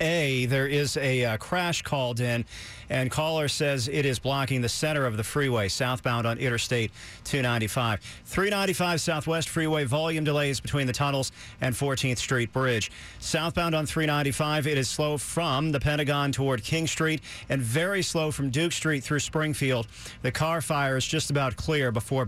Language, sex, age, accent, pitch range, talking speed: English, male, 40-59, American, 125-155 Hz, 170 wpm